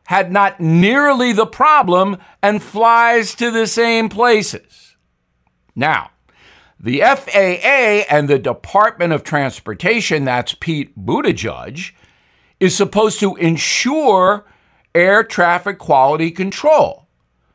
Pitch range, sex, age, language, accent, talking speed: 160-230 Hz, male, 50-69, English, American, 105 wpm